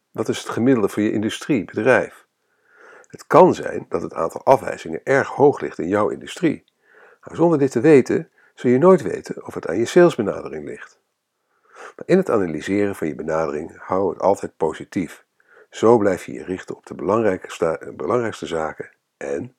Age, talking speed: 60-79, 175 wpm